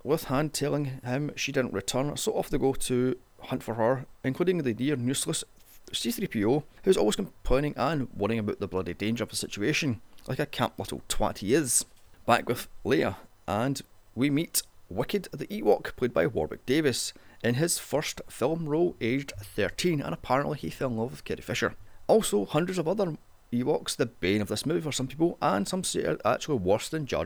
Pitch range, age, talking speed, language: 105-155 Hz, 30-49, 195 wpm, English